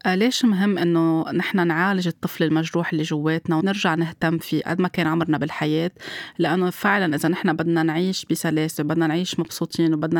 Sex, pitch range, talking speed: female, 165-190 Hz, 165 wpm